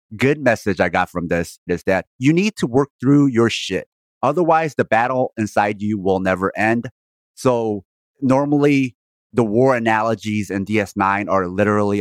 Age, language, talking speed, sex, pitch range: 30-49, English, 160 wpm, male, 95-115 Hz